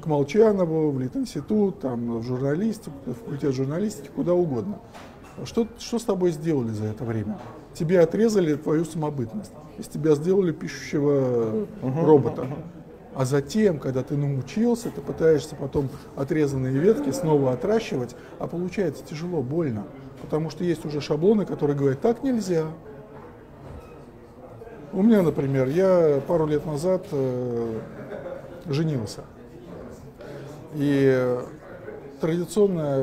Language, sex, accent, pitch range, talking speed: Russian, male, native, 135-180 Hz, 115 wpm